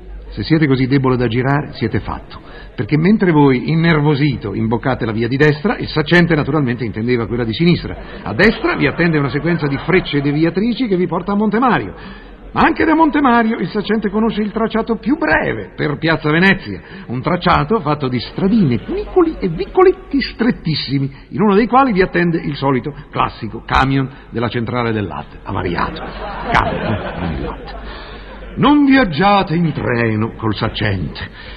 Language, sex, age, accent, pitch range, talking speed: Italian, male, 50-69, native, 125-195 Hz, 165 wpm